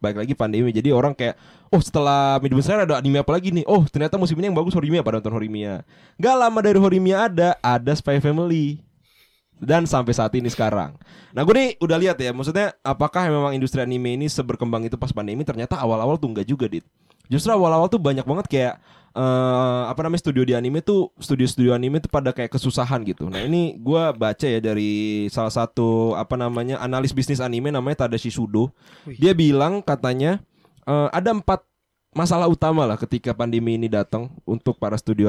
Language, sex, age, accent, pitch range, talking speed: Indonesian, male, 20-39, native, 115-150 Hz, 190 wpm